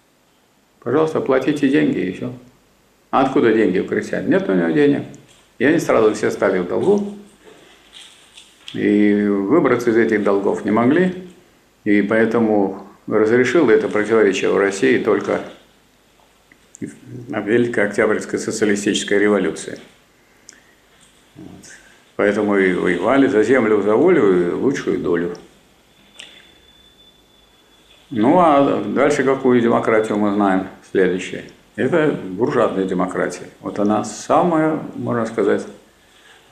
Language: Russian